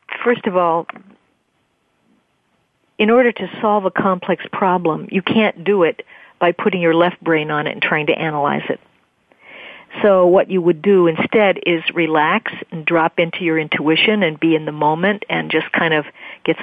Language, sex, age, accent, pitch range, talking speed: English, female, 50-69, American, 165-210 Hz, 175 wpm